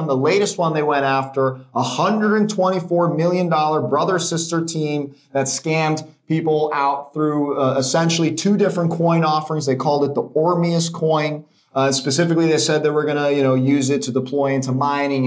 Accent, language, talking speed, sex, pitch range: American, English, 180 wpm, male, 135-165 Hz